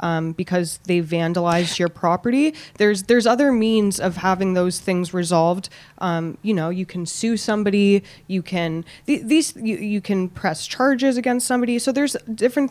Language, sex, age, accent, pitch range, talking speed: English, female, 20-39, American, 185-245 Hz, 170 wpm